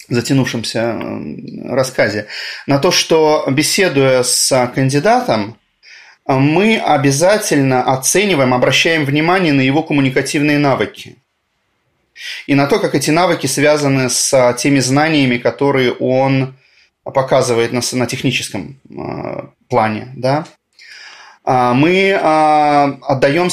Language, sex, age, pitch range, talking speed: Russian, male, 30-49, 120-145 Hz, 90 wpm